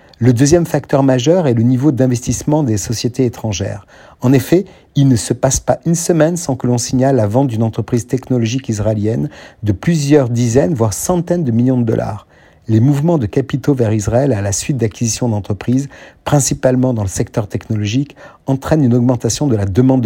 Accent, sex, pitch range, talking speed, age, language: French, male, 110-135 Hz, 180 wpm, 50-69, French